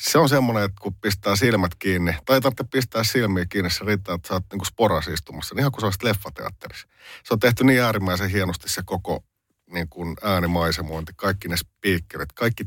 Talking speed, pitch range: 185 wpm, 85-100 Hz